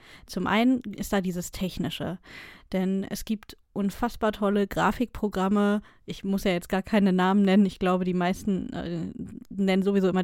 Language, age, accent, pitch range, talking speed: German, 20-39, German, 185-215 Hz, 165 wpm